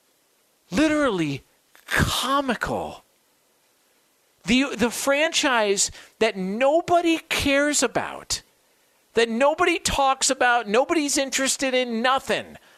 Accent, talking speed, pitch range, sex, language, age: American, 80 wpm, 225-310 Hz, male, English, 50-69